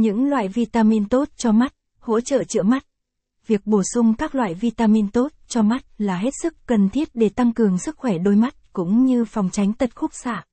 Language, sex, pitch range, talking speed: Vietnamese, female, 205-245 Hz, 215 wpm